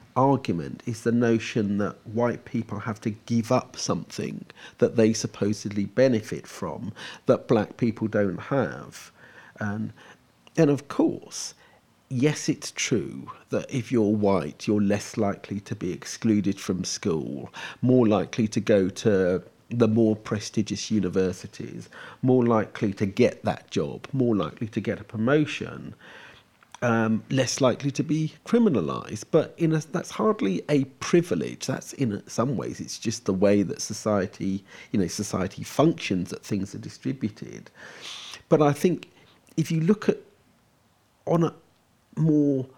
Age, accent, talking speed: 40-59, British, 145 wpm